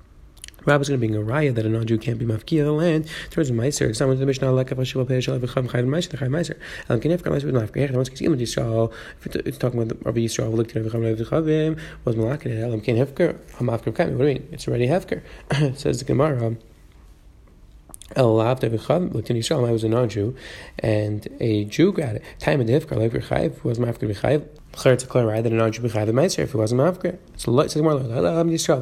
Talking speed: 80 wpm